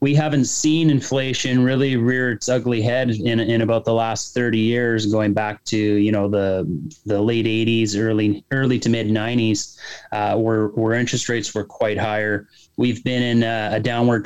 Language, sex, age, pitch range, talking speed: English, male, 30-49, 105-120 Hz, 185 wpm